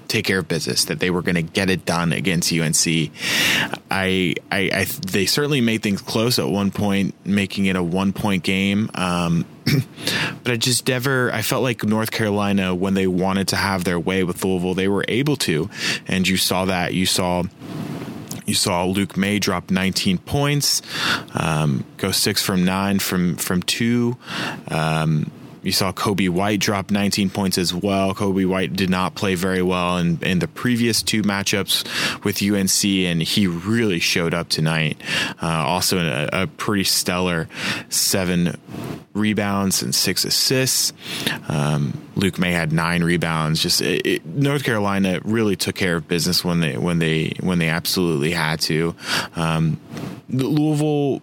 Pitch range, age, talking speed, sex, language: 90-105 Hz, 20-39, 170 wpm, male, English